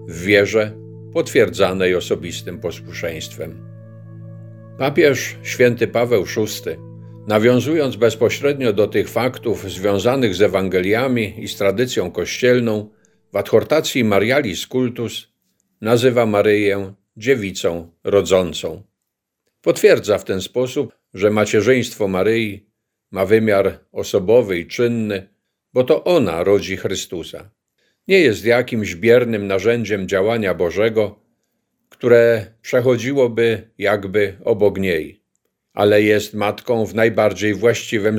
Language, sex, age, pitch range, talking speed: Polish, male, 50-69, 100-120 Hz, 100 wpm